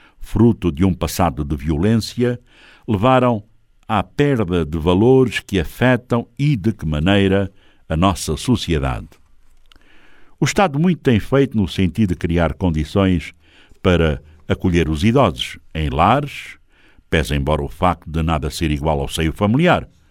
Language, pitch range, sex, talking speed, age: Portuguese, 80-130 Hz, male, 140 wpm, 60-79